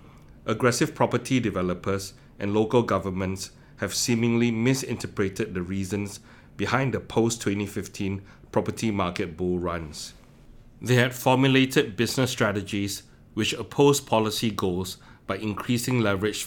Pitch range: 95-120 Hz